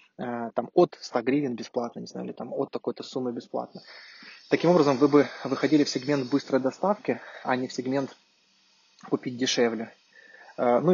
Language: Russian